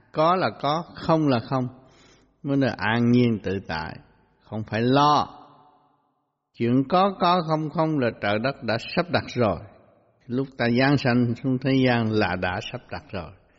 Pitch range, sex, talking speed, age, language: 110-145 Hz, male, 170 wpm, 60-79, Vietnamese